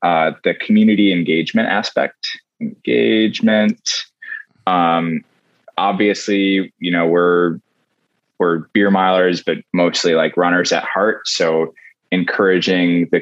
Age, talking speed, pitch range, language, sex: 20-39, 105 wpm, 85-105 Hz, English, male